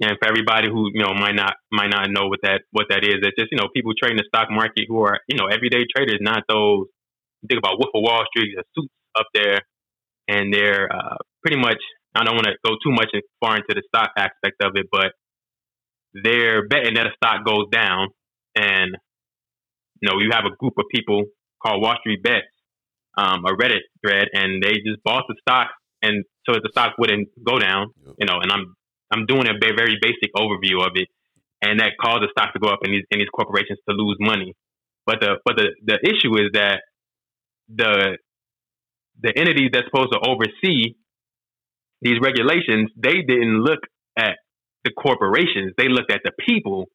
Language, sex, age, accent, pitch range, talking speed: English, male, 20-39, American, 105-125 Hz, 200 wpm